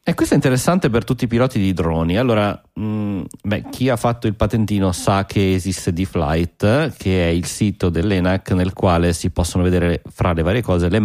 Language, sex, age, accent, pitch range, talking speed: Italian, male, 30-49, native, 85-110 Hz, 190 wpm